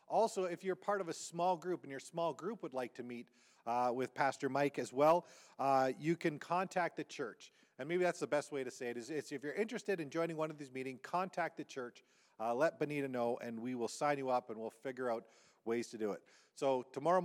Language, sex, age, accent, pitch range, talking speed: English, male, 40-59, American, 120-165 Hz, 245 wpm